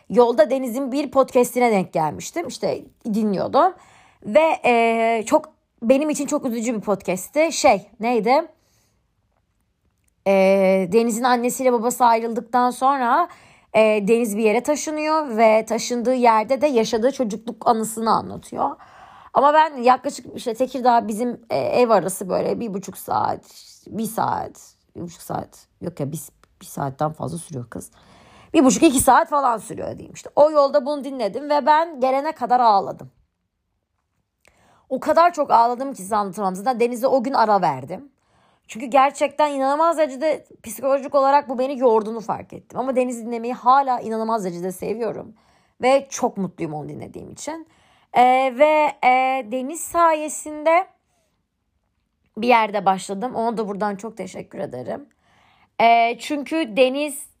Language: Turkish